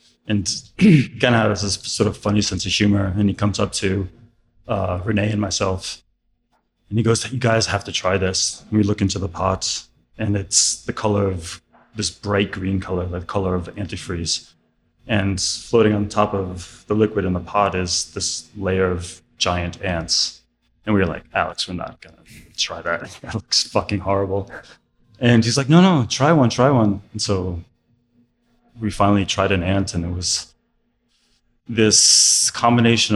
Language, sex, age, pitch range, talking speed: English, male, 20-39, 90-110 Hz, 185 wpm